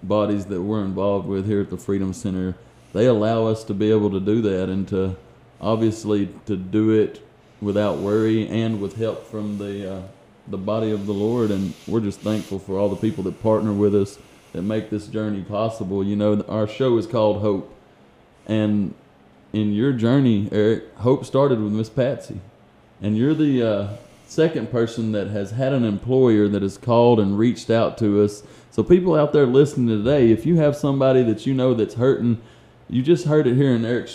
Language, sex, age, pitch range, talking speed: English, male, 30-49, 105-120 Hz, 200 wpm